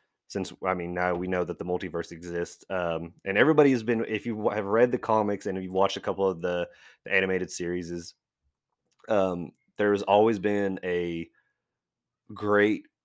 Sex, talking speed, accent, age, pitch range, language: male, 170 wpm, American, 30-49, 90-105 Hz, English